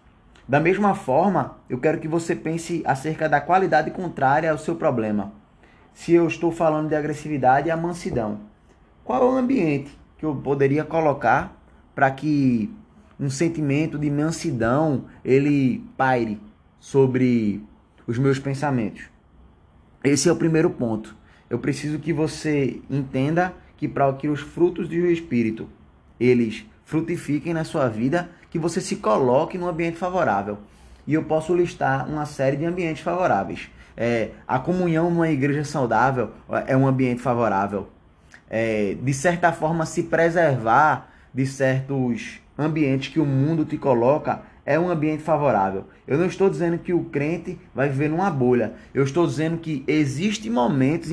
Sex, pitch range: male, 125-165 Hz